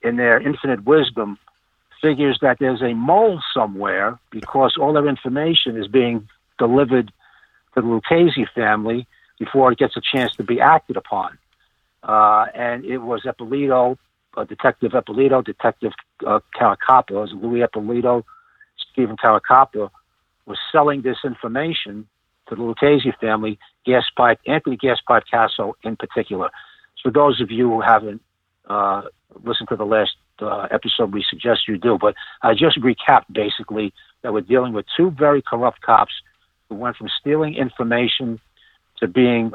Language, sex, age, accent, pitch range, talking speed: English, male, 60-79, American, 110-135 Hz, 150 wpm